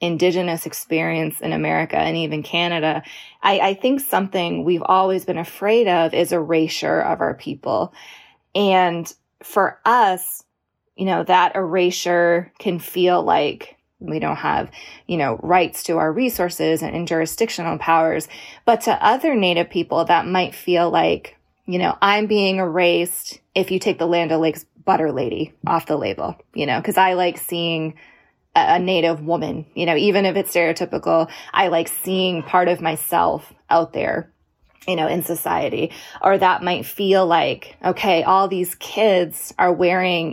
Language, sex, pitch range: English, female, 165-195 Hz